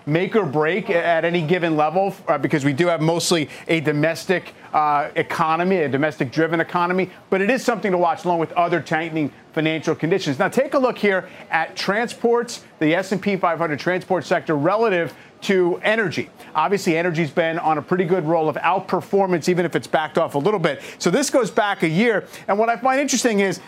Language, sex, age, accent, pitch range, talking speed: English, male, 40-59, American, 155-195 Hz, 195 wpm